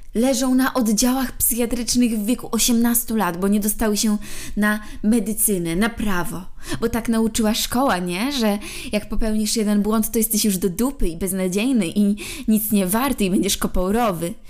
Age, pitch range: 20-39, 190-230 Hz